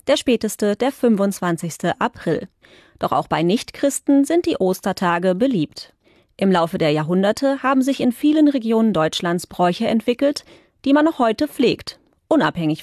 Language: English